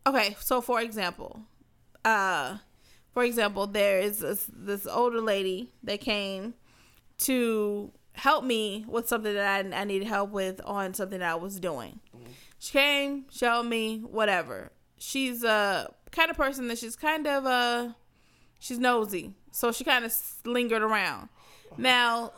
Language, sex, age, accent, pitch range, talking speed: English, female, 20-39, American, 200-250 Hz, 155 wpm